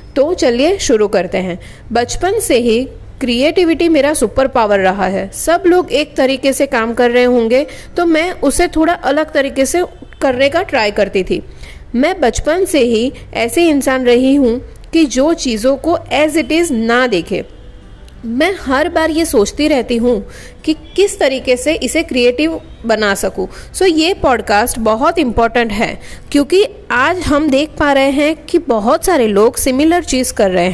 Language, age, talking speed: Hindi, 30-49, 175 wpm